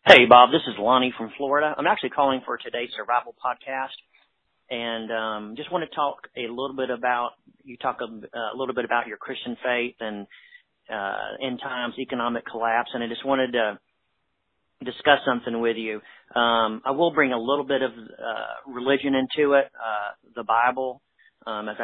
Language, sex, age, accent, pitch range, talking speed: English, male, 40-59, American, 115-135 Hz, 185 wpm